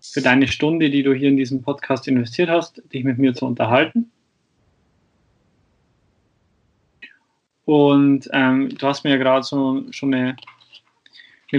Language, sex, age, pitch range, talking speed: German, male, 20-39, 125-140 Hz, 140 wpm